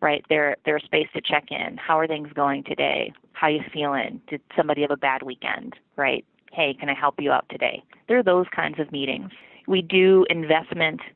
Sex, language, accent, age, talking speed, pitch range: female, English, American, 30-49, 215 wpm, 150-175 Hz